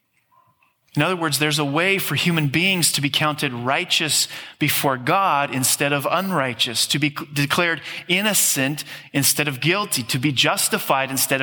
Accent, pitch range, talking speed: American, 135-160 Hz, 150 wpm